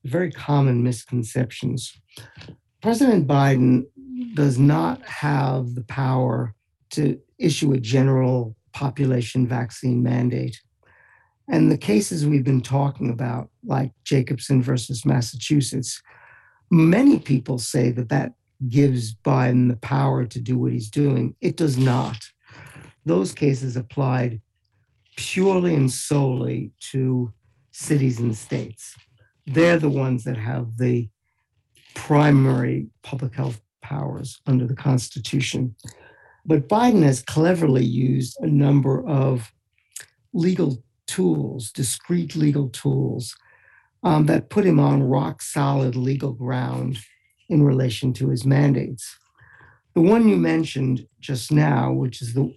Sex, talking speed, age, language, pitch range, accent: male, 120 wpm, 50-69, English, 125-145 Hz, American